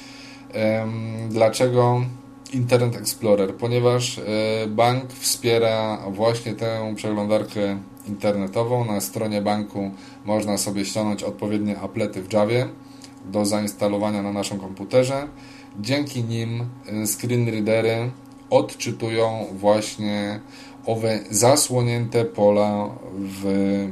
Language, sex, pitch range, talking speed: Polish, male, 100-120 Hz, 90 wpm